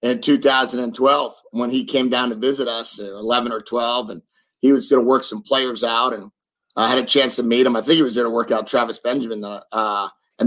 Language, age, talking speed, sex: English, 30-49, 235 wpm, male